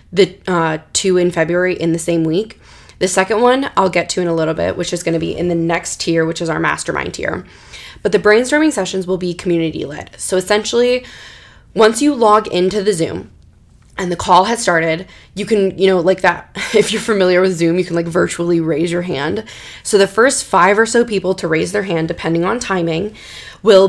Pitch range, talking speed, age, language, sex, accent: 170-195 Hz, 220 wpm, 20-39, English, female, American